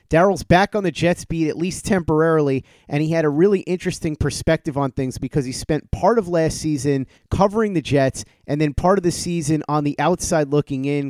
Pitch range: 135-170 Hz